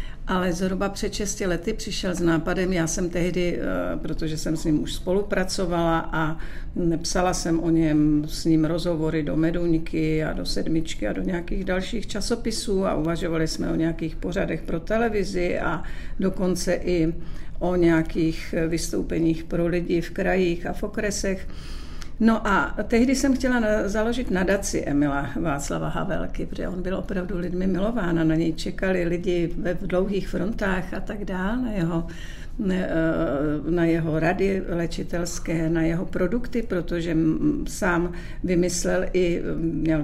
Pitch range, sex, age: 165-195 Hz, female, 50-69